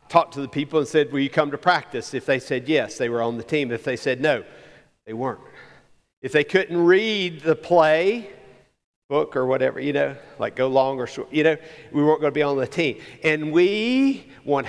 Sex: male